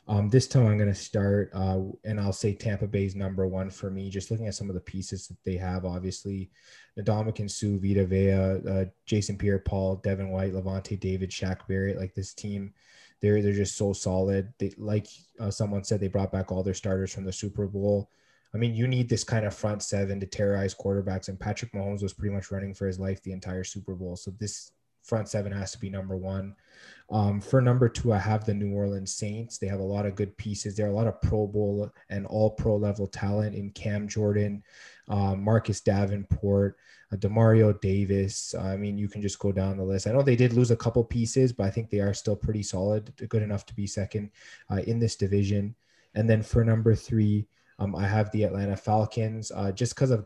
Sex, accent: male, American